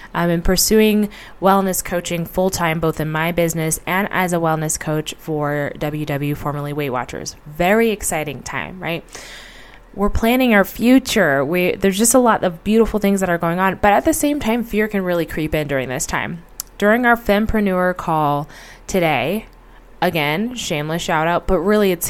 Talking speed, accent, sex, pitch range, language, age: 180 wpm, American, female, 170-215 Hz, English, 20-39